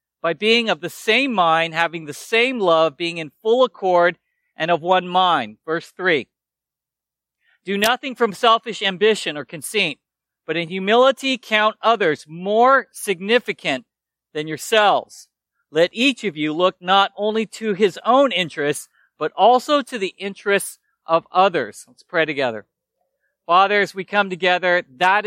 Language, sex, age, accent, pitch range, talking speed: English, male, 40-59, American, 160-205 Hz, 145 wpm